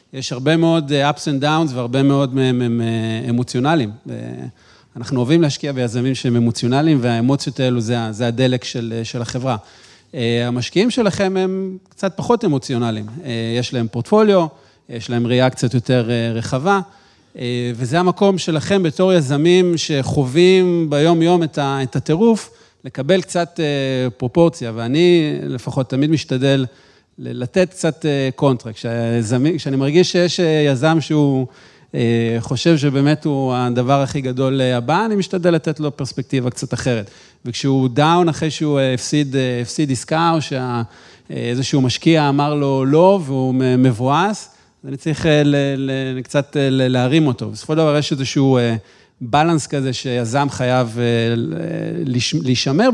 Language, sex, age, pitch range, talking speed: Hebrew, male, 40-59, 125-160 Hz, 125 wpm